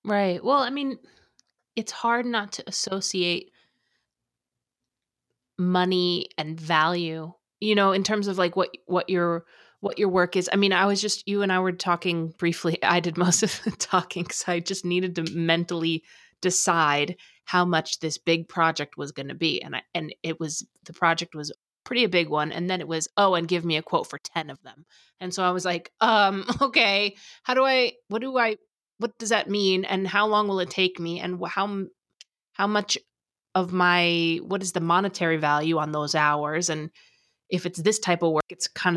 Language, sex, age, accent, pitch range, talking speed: English, female, 30-49, American, 165-195 Hz, 200 wpm